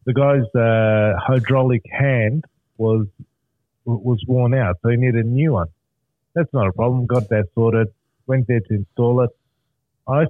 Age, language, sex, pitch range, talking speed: 30-49, English, male, 115-140 Hz, 165 wpm